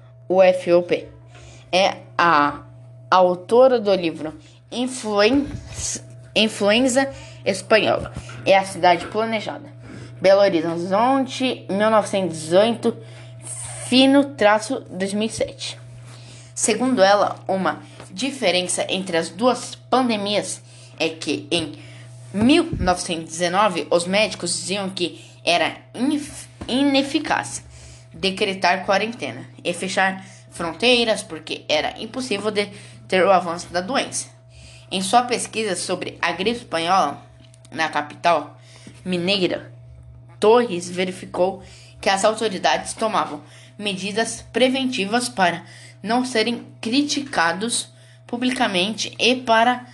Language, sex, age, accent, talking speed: Portuguese, female, 10-29, Brazilian, 90 wpm